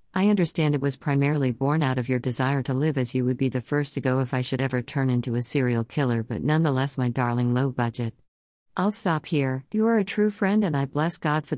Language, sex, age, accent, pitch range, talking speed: English, female, 50-69, American, 130-165 Hz, 250 wpm